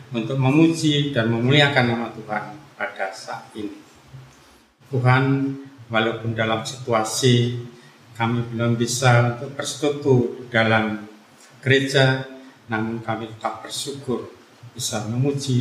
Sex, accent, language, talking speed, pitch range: male, native, Indonesian, 100 wpm, 110-135 Hz